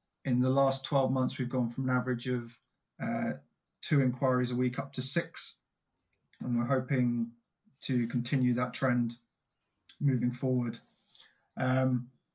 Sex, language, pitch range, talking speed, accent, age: male, English, 125-135 Hz, 140 wpm, British, 20-39